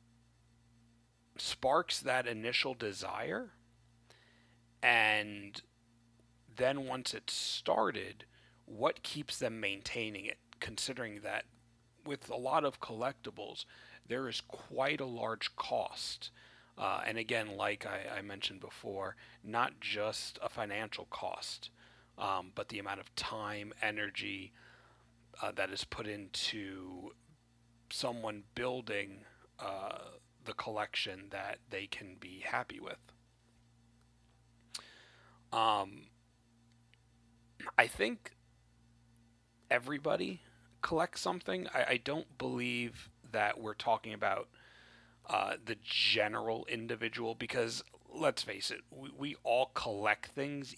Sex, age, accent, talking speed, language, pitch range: male, 30-49, American, 105 wpm, English, 115-120 Hz